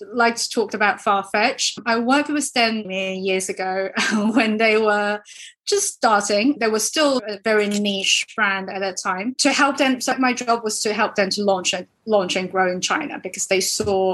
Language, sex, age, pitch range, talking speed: English, female, 20-39, 195-235 Hz, 200 wpm